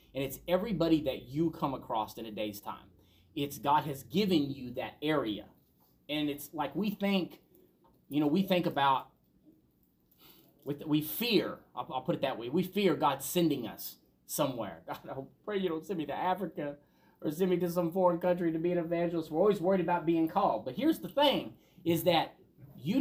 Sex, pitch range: male, 145-200 Hz